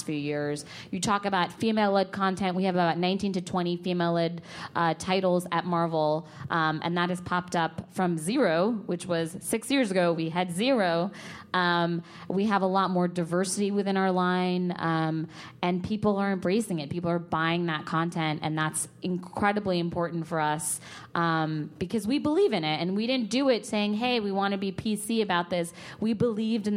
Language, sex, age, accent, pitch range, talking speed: English, female, 20-39, American, 165-195 Hz, 185 wpm